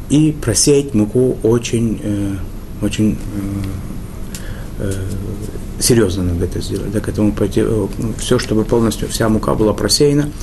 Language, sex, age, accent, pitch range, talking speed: Russian, male, 30-49, native, 100-115 Hz, 115 wpm